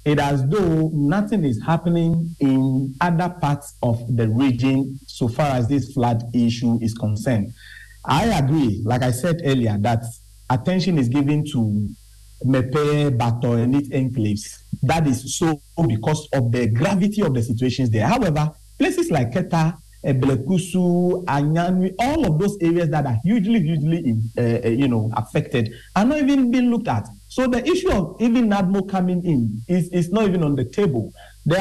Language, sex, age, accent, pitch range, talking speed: English, male, 50-69, Nigerian, 125-175 Hz, 165 wpm